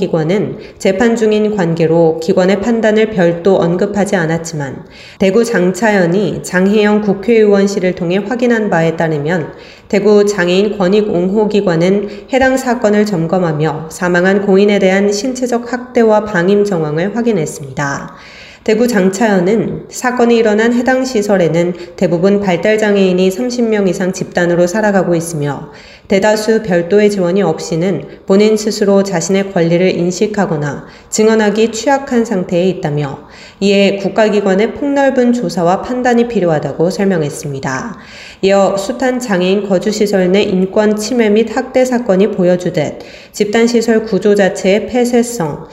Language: Korean